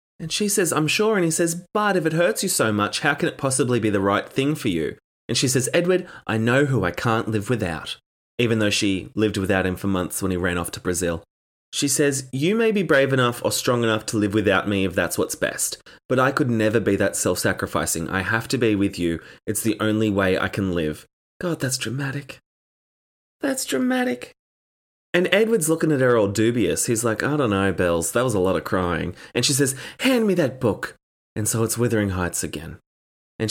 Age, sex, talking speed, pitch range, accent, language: 20-39, male, 225 wpm, 100-135 Hz, Australian, English